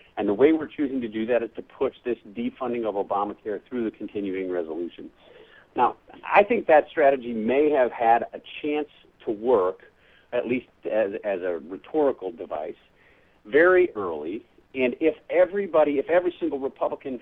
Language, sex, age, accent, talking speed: English, male, 50-69, American, 165 wpm